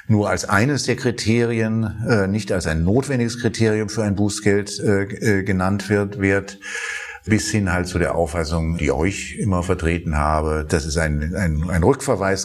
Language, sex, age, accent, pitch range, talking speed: German, male, 50-69, German, 80-100 Hz, 170 wpm